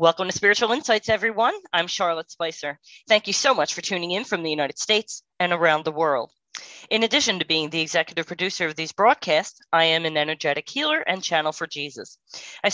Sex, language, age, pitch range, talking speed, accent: female, English, 30-49, 165-220 Hz, 205 wpm, American